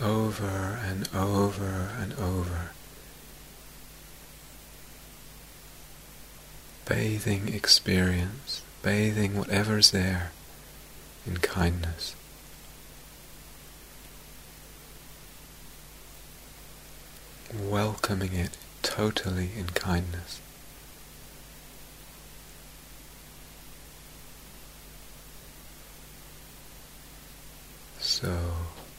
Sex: male